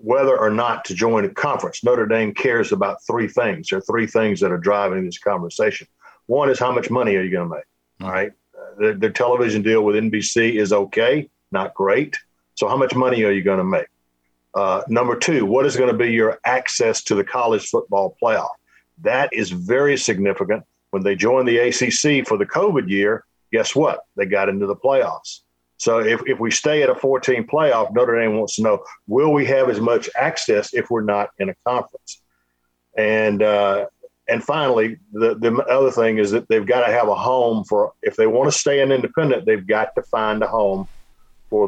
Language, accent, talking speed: English, American, 210 wpm